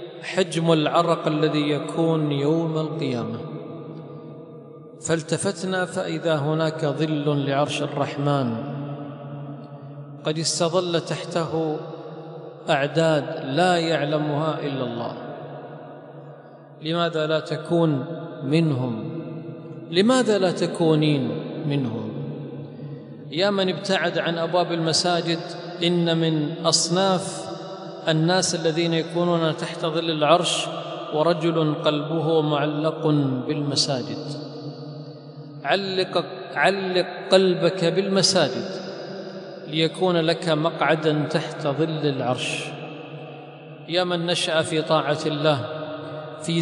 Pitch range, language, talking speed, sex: 155-175 Hz, Arabic, 80 wpm, male